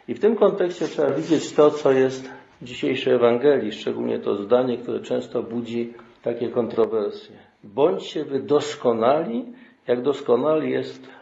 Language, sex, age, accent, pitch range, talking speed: Polish, male, 50-69, native, 120-145 Hz, 140 wpm